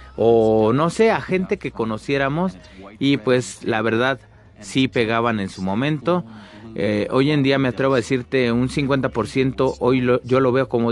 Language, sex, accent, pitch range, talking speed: Spanish, male, Mexican, 110-150 Hz, 175 wpm